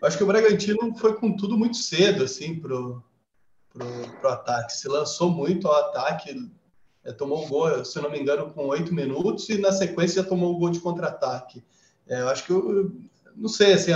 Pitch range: 145-195 Hz